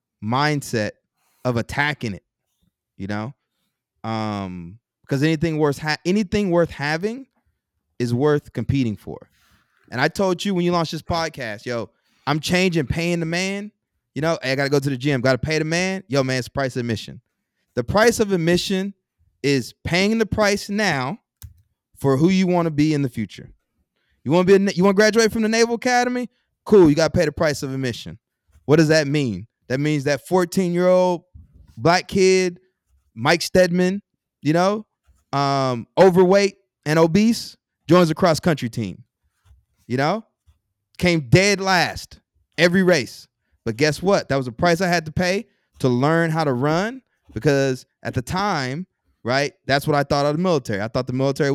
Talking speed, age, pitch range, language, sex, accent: 180 wpm, 20-39, 125-180 Hz, English, male, American